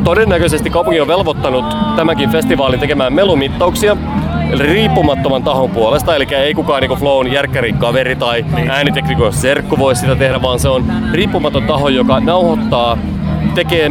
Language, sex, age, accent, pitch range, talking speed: Finnish, male, 30-49, native, 120-160 Hz, 140 wpm